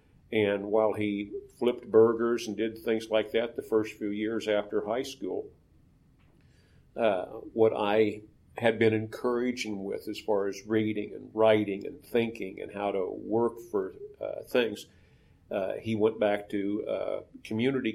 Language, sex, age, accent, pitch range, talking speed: English, male, 50-69, American, 100-115 Hz, 155 wpm